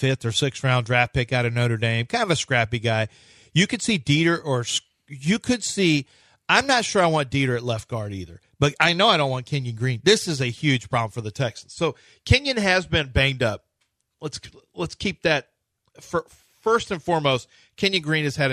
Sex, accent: male, American